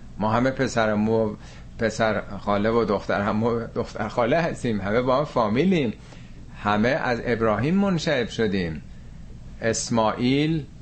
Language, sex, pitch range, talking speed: Persian, male, 100-135 Hz, 115 wpm